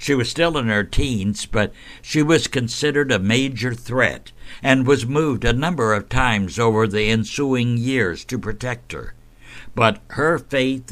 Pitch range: 105-135 Hz